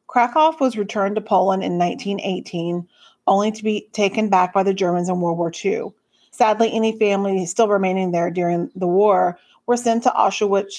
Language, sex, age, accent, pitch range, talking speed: English, female, 40-59, American, 185-225 Hz, 180 wpm